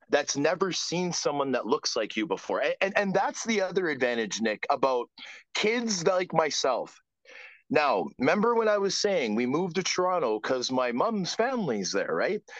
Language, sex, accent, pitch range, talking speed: English, male, American, 160-215 Hz, 170 wpm